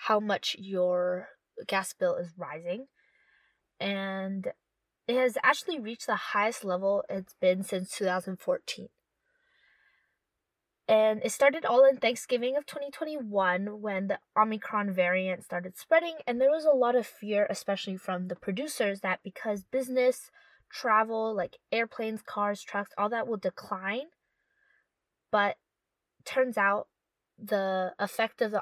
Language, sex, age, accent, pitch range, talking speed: English, female, 20-39, American, 190-255 Hz, 130 wpm